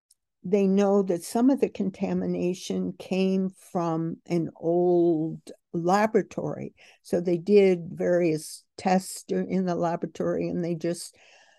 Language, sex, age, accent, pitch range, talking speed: English, female, 60-79, American, 165-200 Hz, 120 wpm